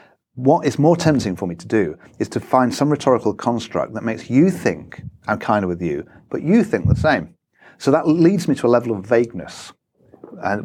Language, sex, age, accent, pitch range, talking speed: English, male, 40-59, British, 95-140 Hz, 215 wpm